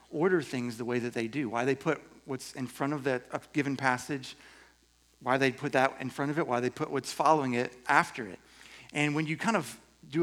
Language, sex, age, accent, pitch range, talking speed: English, male, 40-59, American, 130-165 Hz, 230 wpm